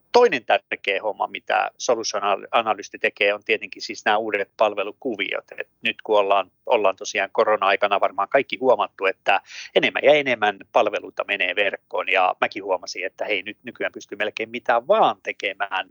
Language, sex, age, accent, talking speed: Finnish, male, 30-49, native, 155 wpm